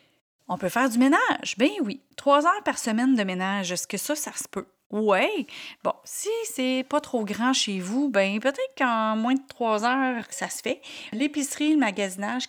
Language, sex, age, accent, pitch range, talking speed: French, female, 30-49, Canadian, 195-270 Hz, 195 wpm